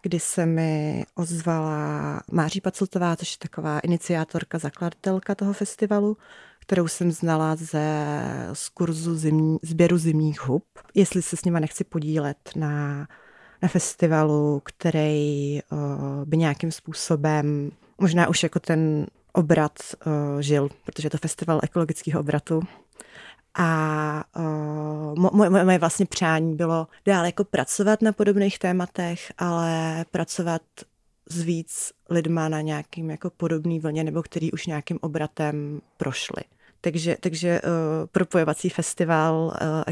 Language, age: Czech, 30-49